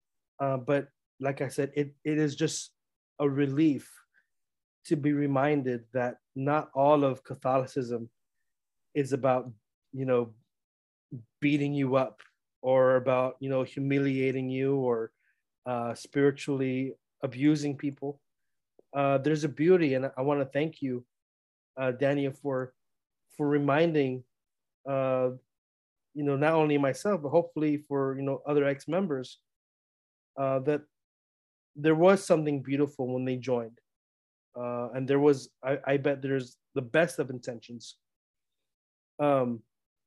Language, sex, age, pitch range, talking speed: English, male, 30-49, 125-145 Hz, 130 wpm